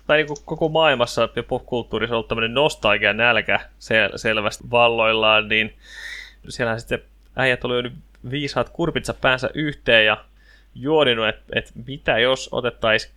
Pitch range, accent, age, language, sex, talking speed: 110-135 Hz, native, 20-39, Finnish, male, 130 wpm